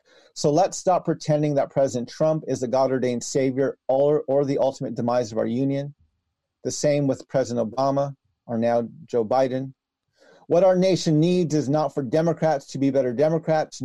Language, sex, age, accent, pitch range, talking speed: English, male, 40-59, American, 135-165 Hz, 175 wpm